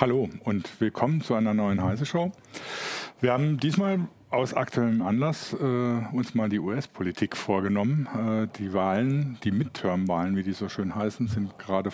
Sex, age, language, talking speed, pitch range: male, 50-69, German, 155 wpm, 105-140 Hz